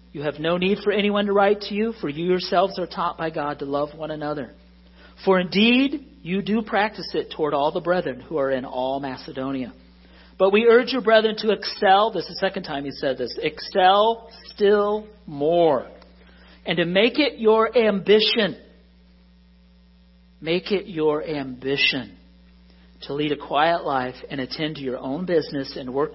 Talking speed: 175 wpm